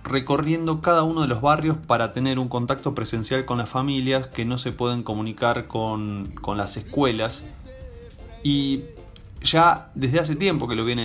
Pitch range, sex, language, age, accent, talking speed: 110-130 Hz, male, Spanish, 20-39, Argentinian, 170 wpm